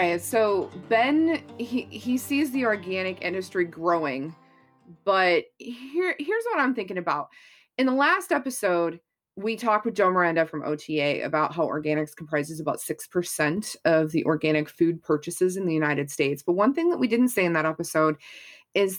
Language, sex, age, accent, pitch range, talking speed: English, female, 20-39, American, 160-215 Hz, 170 wpm